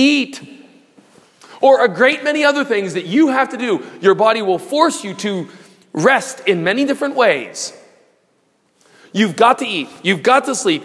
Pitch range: 205-265 Hz